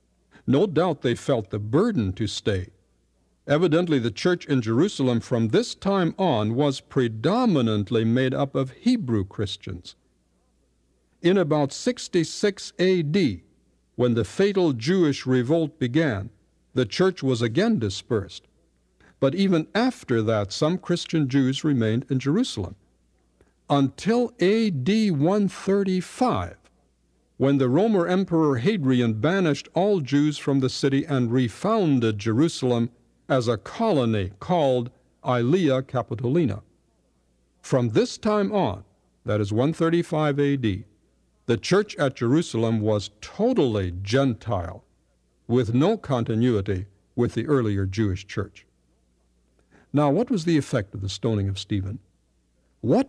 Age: 60-79